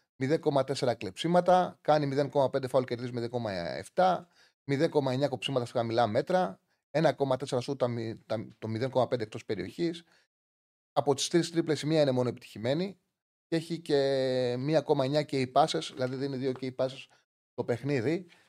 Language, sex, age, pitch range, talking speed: Greek, male, 30-49, 115-150 Hz, 135 wpm